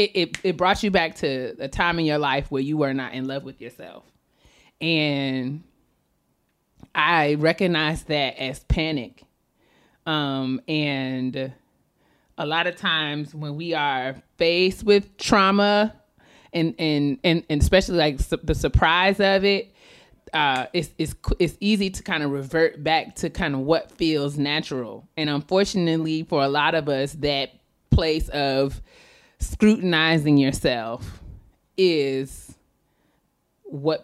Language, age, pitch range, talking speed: English, 30-49, 140-180 Hz, 140 wpm